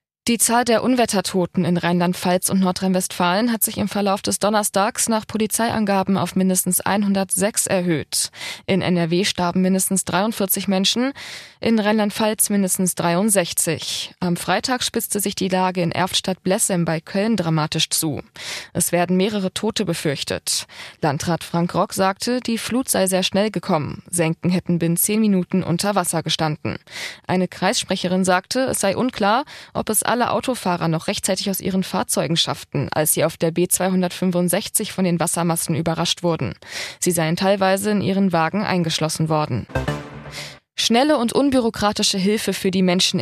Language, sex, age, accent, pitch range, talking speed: German, female, 20-39, German, 170-205 Hz, 145 wpm